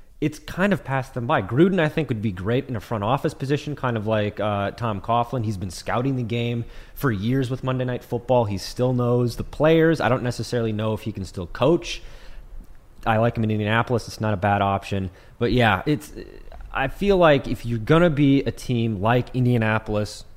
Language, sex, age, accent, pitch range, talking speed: English, male, 30-49, American, 100-125 Hz, 215 wpm